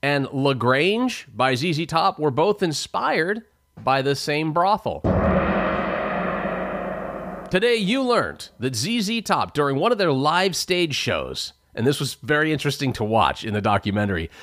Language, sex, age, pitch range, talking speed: English, male, 30-49, 115-165 Hz, 145 wpm